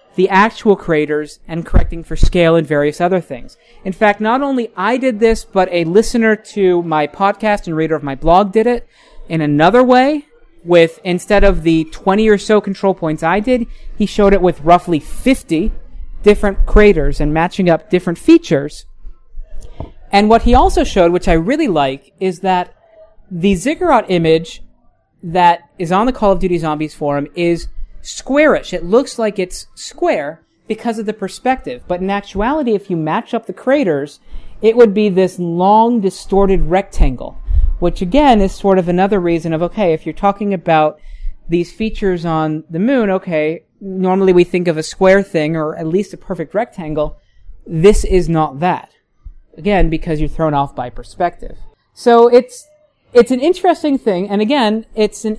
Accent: American